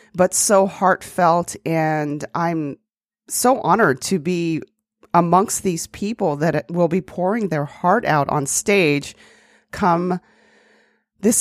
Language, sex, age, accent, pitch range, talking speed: English, female, 30-49, American, 155-205 Hz, 120 wpm